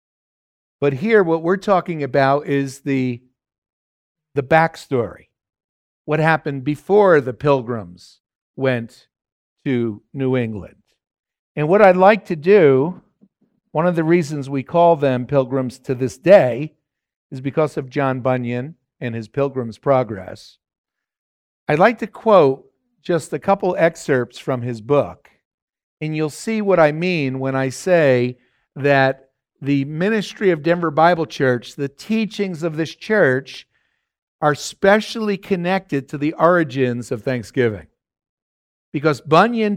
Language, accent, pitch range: English, American, 130-175 Hz